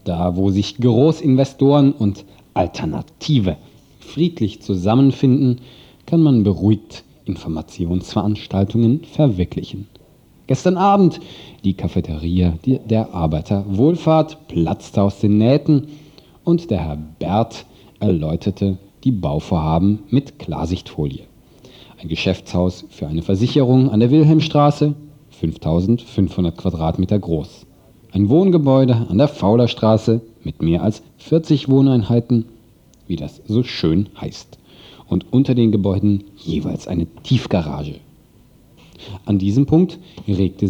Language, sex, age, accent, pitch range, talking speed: German, male, 40-59, German, 95-135 Hz, 100 wpm